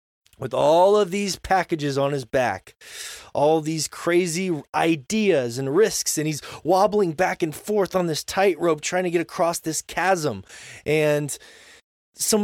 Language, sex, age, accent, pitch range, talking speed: English, male, 20-39, American, 125-195 Hz, 150 wpm